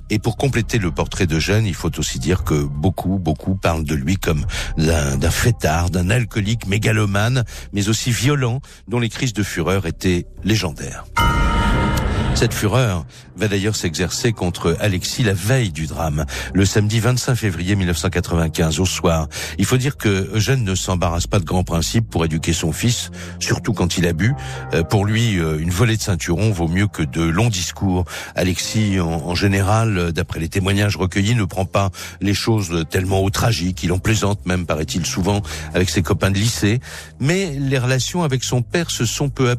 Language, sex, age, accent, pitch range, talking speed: French, male, 60-79, French, 90-120 Hz, 180 wpm